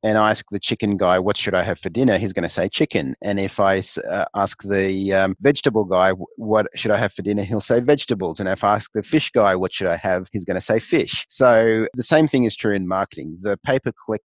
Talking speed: 255 wpm